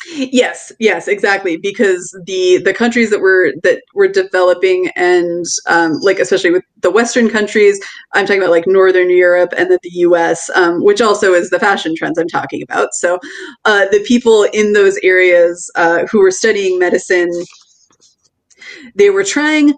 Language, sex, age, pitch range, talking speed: English, female, 30-49, 180-285 Hz, 165 wpm